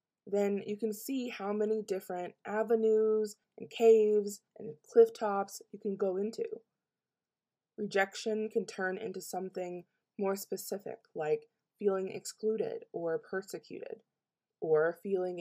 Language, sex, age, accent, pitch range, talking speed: English, female, 20-39, American, 185-220 Hz, 115 wpm